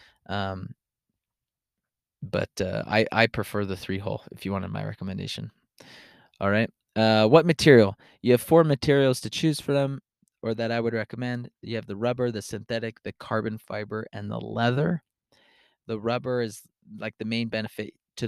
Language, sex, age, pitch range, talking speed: English, male, 20-39, 105-120 Hz, 170 wpm